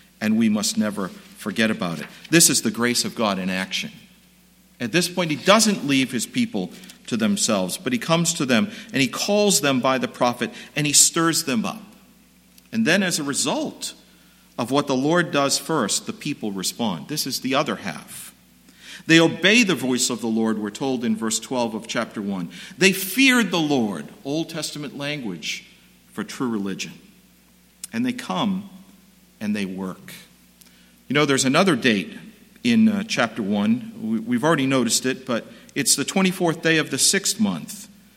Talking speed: 180 wpm